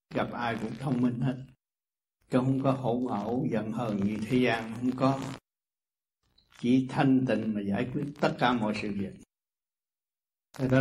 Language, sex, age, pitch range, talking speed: Vietnamese, male, 60-79, 125-150 Hz, 170 wpm